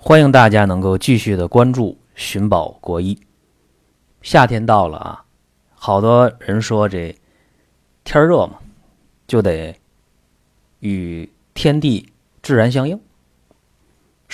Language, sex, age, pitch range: Chinese, male, 30-49, 85-135 Hz